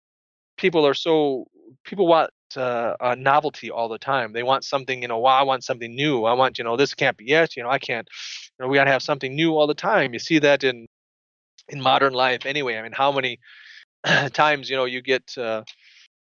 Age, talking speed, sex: 20-39, 225 wpm, male